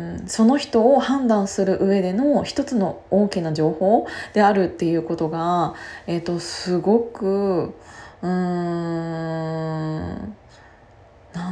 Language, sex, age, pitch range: Japanese, female, 20-39, 175-220 Hz